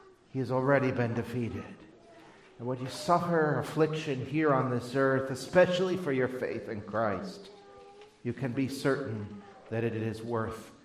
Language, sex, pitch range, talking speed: English, male, 115-150 Hz, 155 wpm